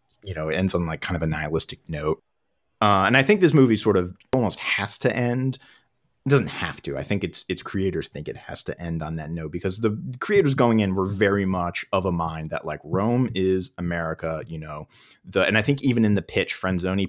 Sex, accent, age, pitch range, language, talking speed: male, American, 30-49, 80-105 Hz, English, 235 wpm